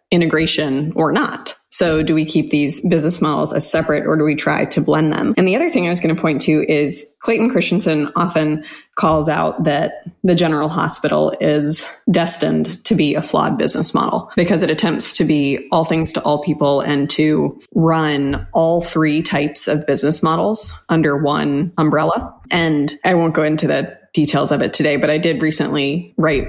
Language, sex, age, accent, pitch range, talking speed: English, female, 20-39, American, 150-170 Hz, 190 wpm